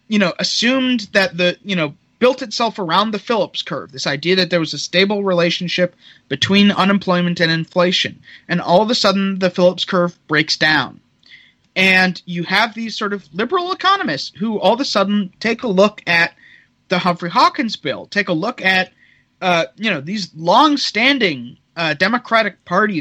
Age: 30-49